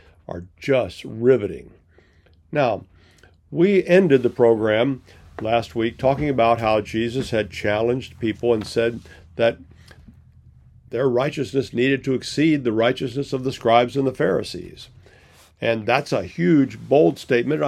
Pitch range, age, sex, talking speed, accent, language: 105-135 Hz, 50-69, male, 130 wpm, American, English